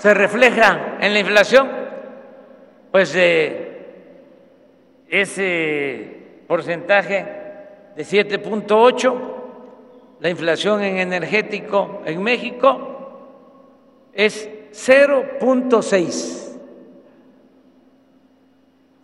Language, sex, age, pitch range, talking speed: Spanish, male, 60-79, 180-270 Hz, 60 wpm